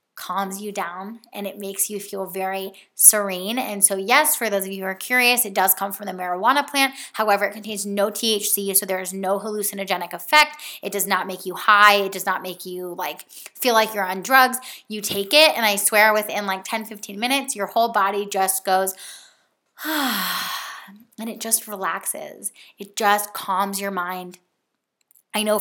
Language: English